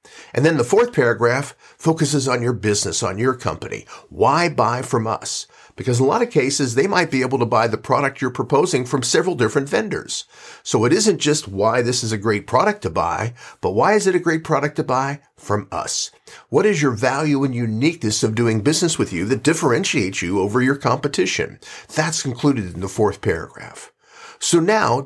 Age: 50-69